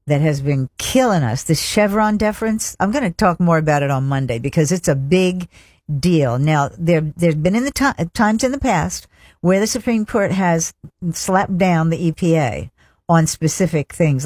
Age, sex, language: 60-79, female, English